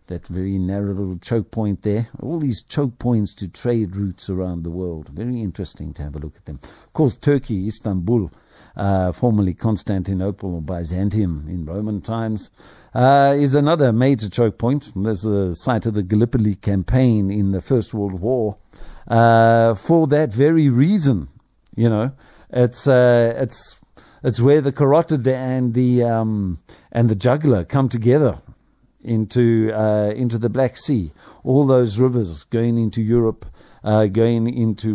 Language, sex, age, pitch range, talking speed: English, male, 50-69, 100-125 Hz, 155 wpm